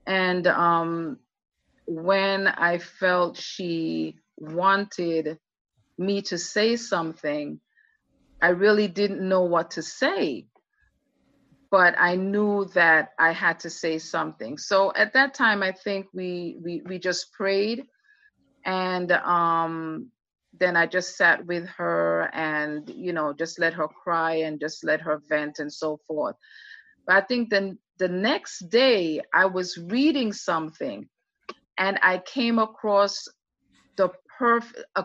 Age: 30-49